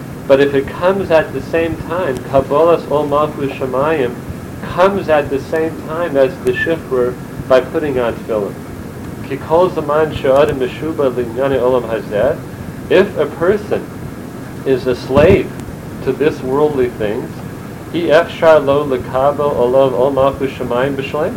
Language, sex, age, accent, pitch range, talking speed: English, male, 40-59, American, 130-150 Hz, 105 wpm